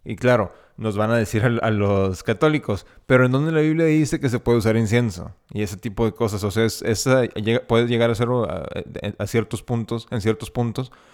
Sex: male